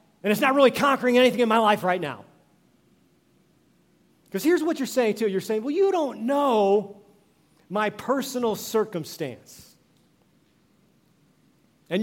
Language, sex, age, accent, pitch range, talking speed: English, male, 40-59, American, 200-260 Hz, 135 wpm